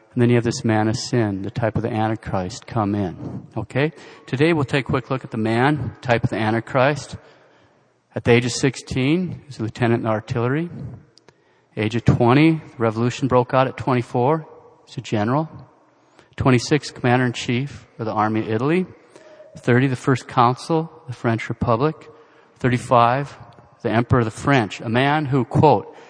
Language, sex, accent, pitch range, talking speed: English, male, American, 110-140 Hz, 175 wpm